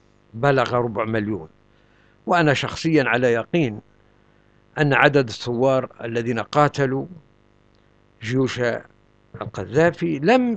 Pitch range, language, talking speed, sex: 120-160 Hz, Arabic, 85 wpm, male